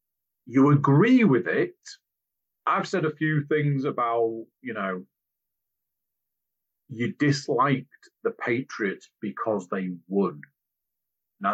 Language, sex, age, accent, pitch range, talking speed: English, male, 40-59, British, 100-155 Hz, 105 wpm